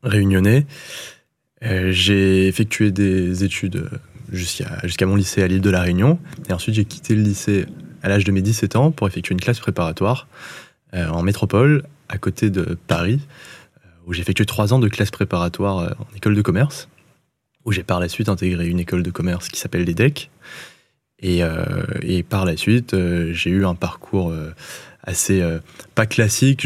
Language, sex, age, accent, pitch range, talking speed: French, male, 20-39, French, 90-110 Hz, 180 wpm